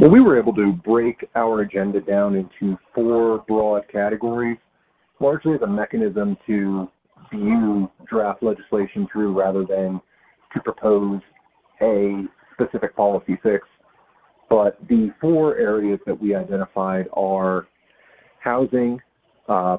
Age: 40-59